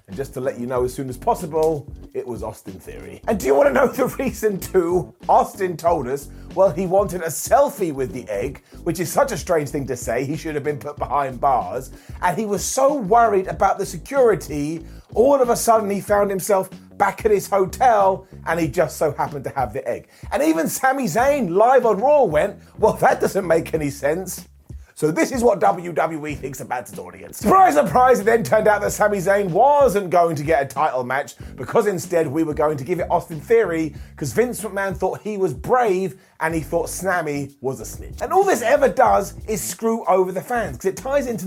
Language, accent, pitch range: English, British, 155-215 Hz